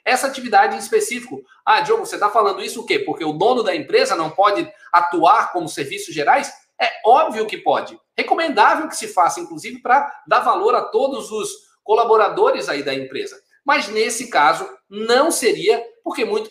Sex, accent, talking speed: male, Brazilian, 180 wpm